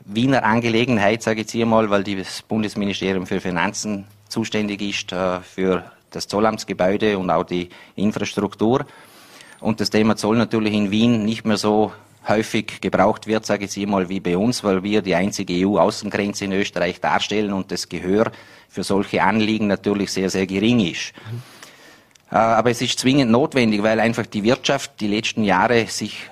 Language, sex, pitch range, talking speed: German, male, 95-110 Hz, 170 wpm